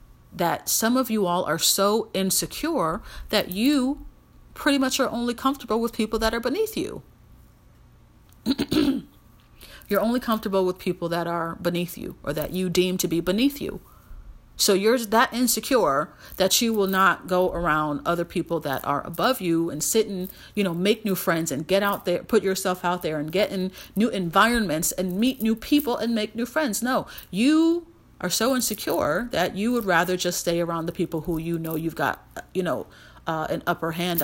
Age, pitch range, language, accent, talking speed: 40-59, 175-240 Hz, English, American, 190 wpm